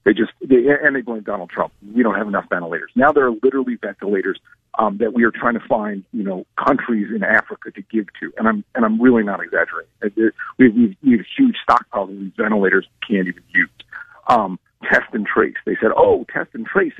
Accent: American